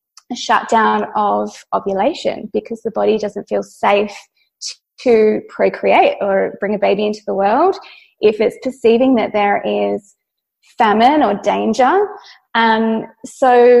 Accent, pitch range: Australian, 210-260 Hz